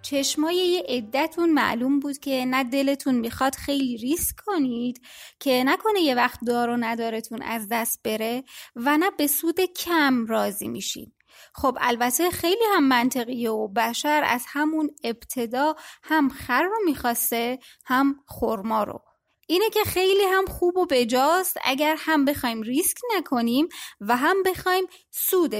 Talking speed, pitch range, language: 145 wpm, 240-335 Hz, Persian